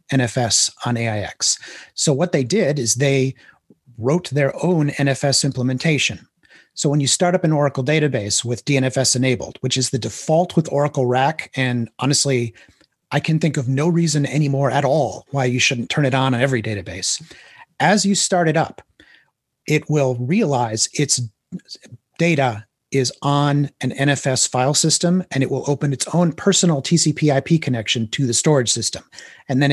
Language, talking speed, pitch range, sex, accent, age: English, 170 wpm, 125-150 Hz, male, American, 30-49